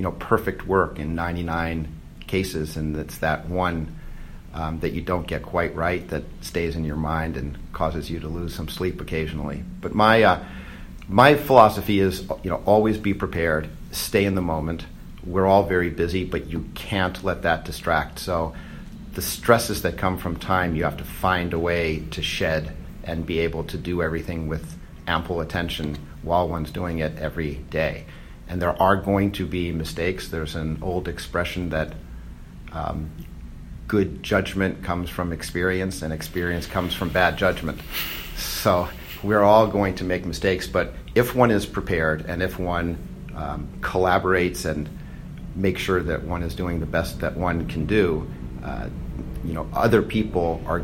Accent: American